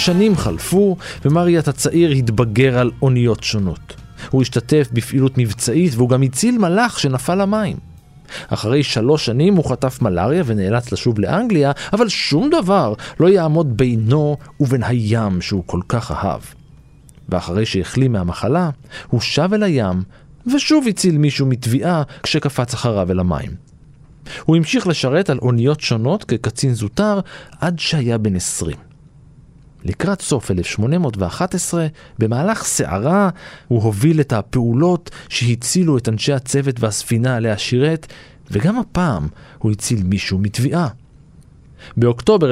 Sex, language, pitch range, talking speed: male, Hebrew, 110-160 Hz, 125 wpm